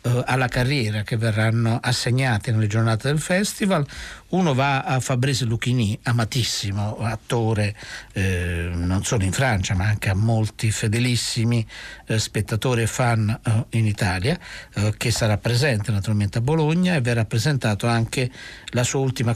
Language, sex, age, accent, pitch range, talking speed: Italian, male, 60-79, native, 110-140 Hz, 145 wpm